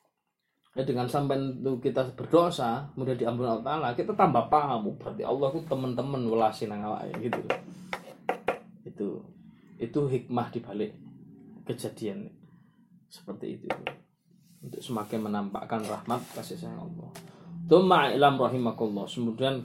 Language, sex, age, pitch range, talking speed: Malay, male, 20-39, 115-165 Hz, 110 wpm